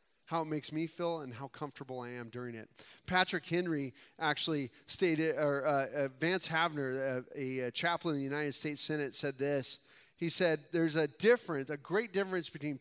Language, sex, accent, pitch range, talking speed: English, male, American, 135-170 Hz, 185 wpm